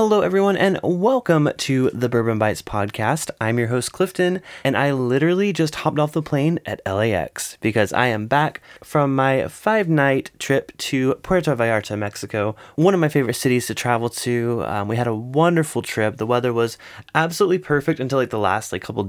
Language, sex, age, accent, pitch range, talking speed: English, male, 20-39, American, 115-160 Hz, 190 wpm